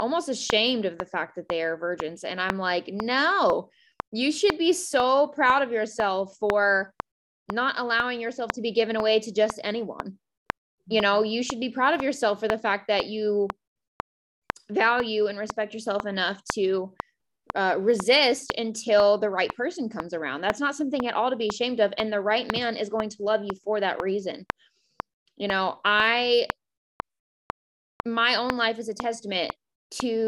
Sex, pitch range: female, 195-230 Hz